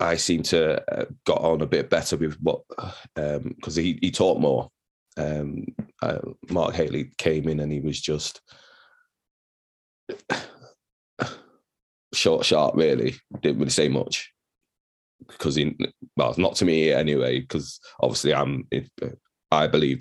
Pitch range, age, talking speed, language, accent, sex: 70-85 Hz, 20-39, 140 wpm, English, British, male